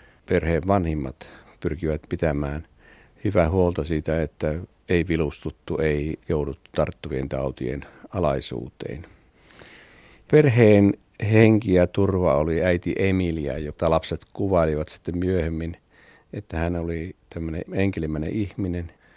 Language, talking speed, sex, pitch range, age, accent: Finnish, 105 wpm, male, 80-95 Hz, 50-69, native